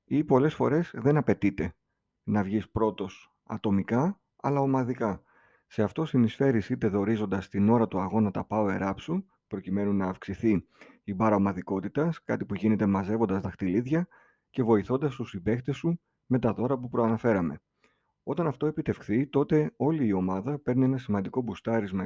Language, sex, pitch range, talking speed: Greek, male, 105-140 Hz, 155 wpm